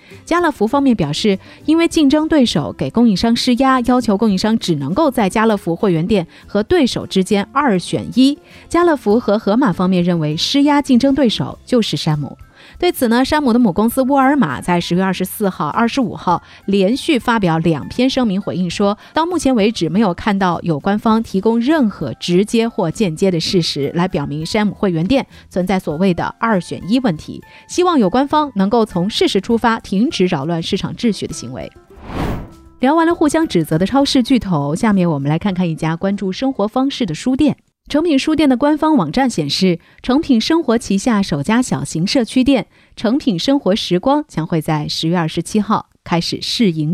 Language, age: Chinese, 30-49